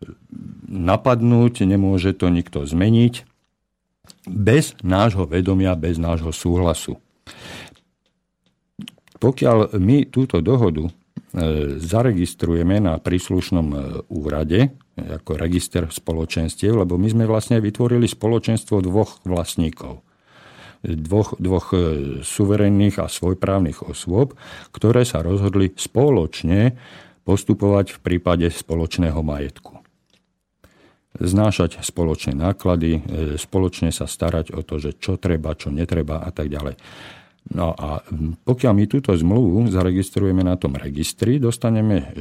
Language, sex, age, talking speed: Slovak, male, 50-69, 100 wpm